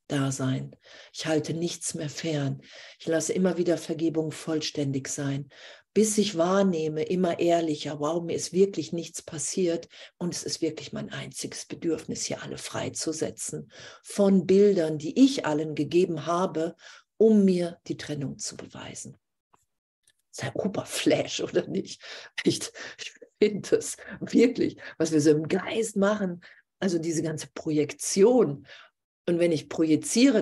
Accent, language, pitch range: German, German, 150-185 Hz